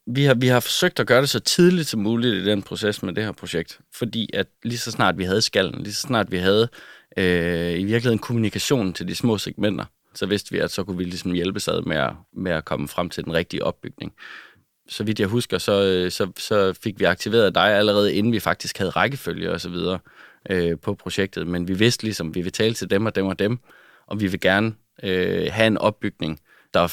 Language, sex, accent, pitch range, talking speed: Danish, male, native, 90-110 Hz, 240 wpm